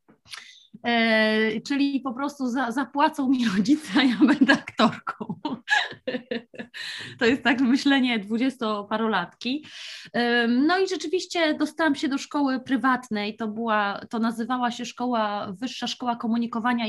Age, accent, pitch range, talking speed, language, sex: 20-39, native, 220-280 Hz, 125 wpm, Polish, female